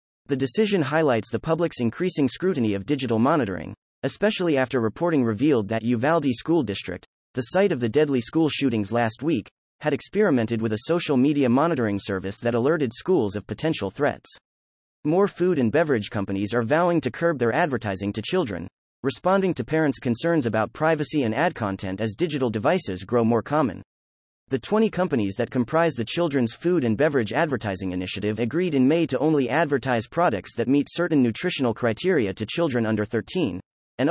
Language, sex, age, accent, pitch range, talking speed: English, male, 30-49, American, 110-160 Hz, 170 wpm